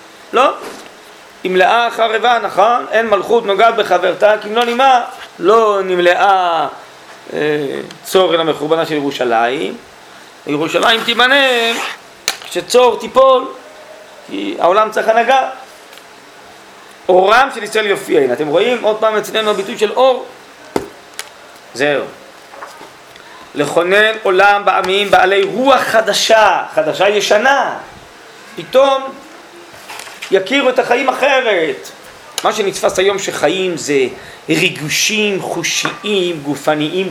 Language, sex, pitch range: Hebrew, male, 180-245 Hz